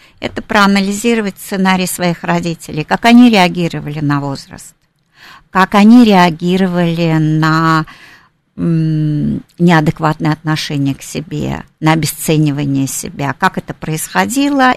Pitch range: 160-210 Hz